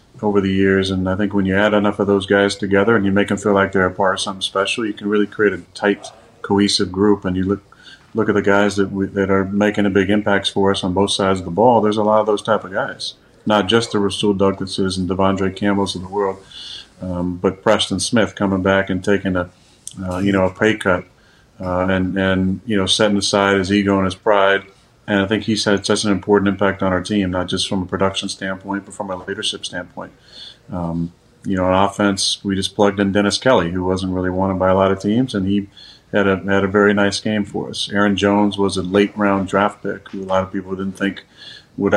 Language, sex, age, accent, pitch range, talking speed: English, male, 40-59, American, 95-105 Hz, 245 wpm